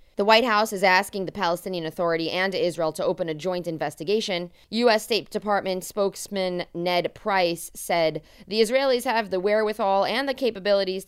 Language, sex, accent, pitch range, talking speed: English, female, American, 175-220 Hz, 165 wpm